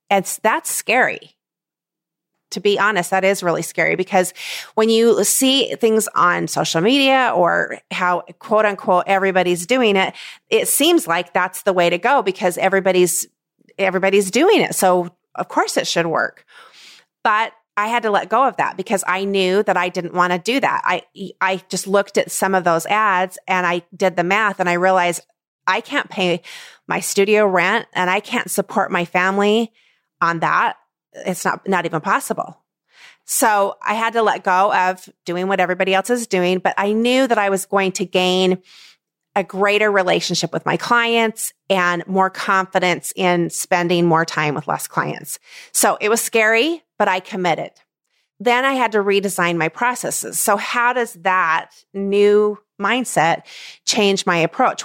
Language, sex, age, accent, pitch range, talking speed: English, female, 30-49, American, 180-220 Hz, 175 wpm